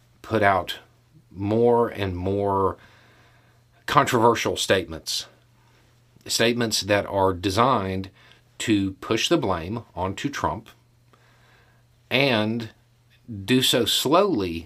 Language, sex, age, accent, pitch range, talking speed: English, male, 40-59, American, 100-120 Hz, 85 wpm